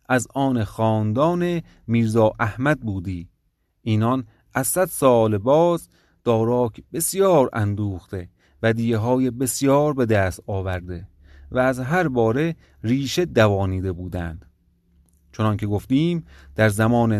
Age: 30-49